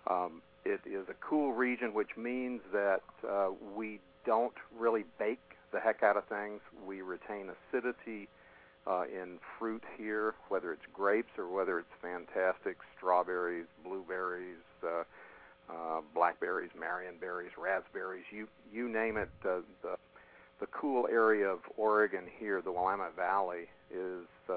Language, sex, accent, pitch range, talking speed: English, male, American, 90-110 Hz, 135 wpm